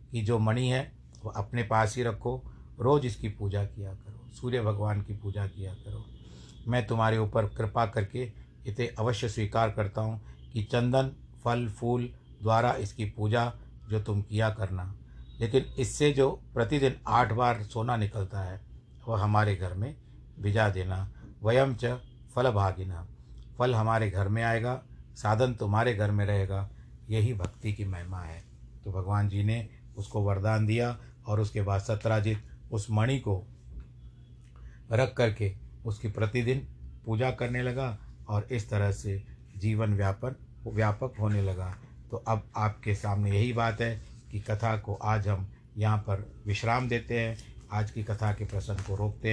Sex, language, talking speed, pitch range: male, Hindi, 155 wpm, 100-115 Hz